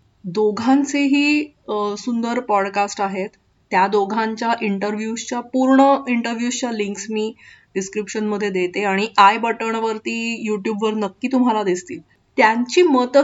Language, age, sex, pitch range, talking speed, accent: Marathi, 30-49, female, 190-235 Hz, 105 wpm, native